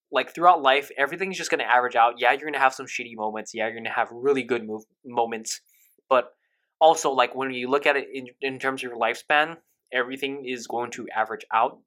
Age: 20-39